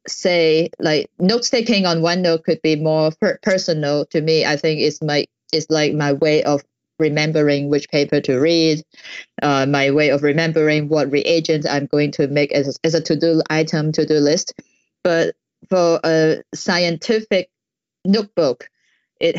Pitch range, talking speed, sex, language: 150-175 Hz, 160 wpm, female, English